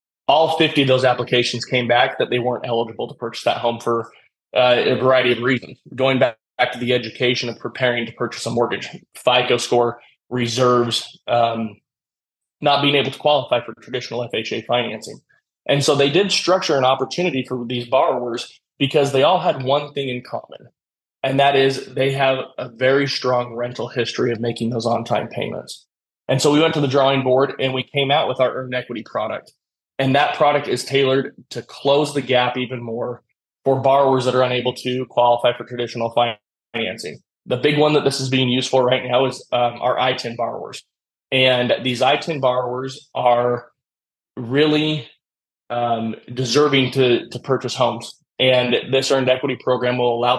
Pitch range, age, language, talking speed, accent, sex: 120-135 Hz, 20-39, English, 180 wpm, American, male